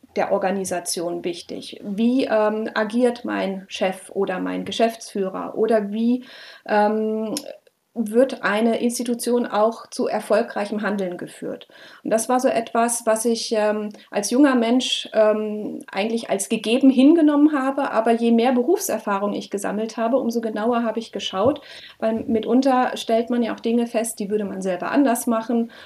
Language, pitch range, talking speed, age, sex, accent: German, 210-250 Hz, 150 wpm, 30-49, female, German